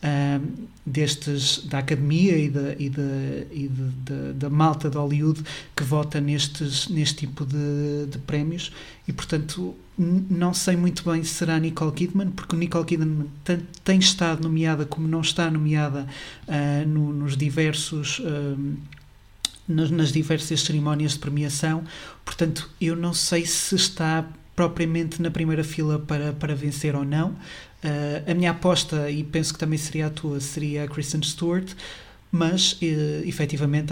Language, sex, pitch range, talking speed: Portuguese, male, 145-165 Hz, 150 wpm